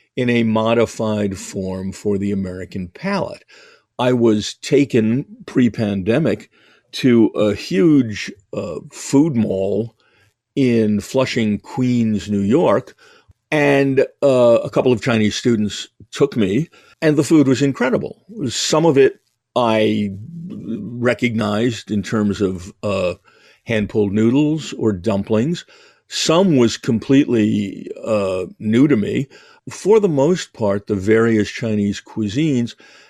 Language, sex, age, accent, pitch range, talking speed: English, male, 50-69, American, 105-130 Hz, 120 wpm